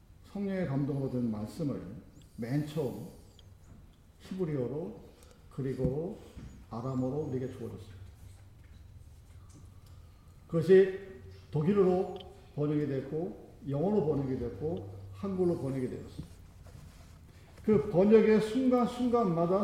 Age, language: 50-69, Korean